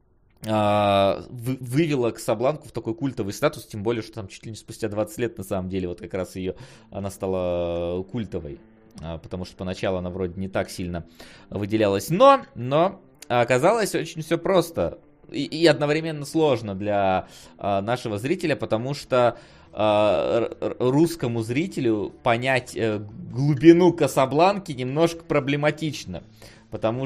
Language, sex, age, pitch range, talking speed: Russian, male, 20-39, 100-130 Hz, 125 wpm